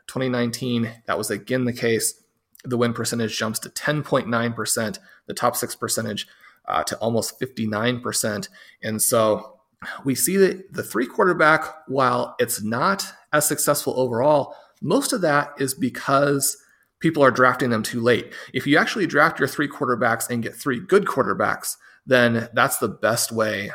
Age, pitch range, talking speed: 30-49, 115-150 Hz, 160 wpm